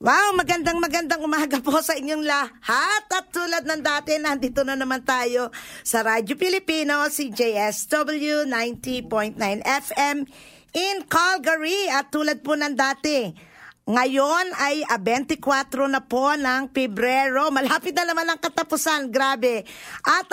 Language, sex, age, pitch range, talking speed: English, female, 50-69, 245-315 Hz, 125 wpm